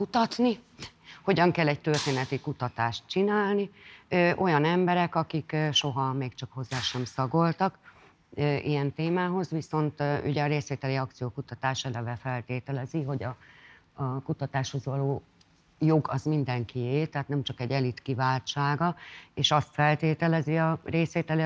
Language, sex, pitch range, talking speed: Hungarian, female, 125-150 Hz, 130 wpm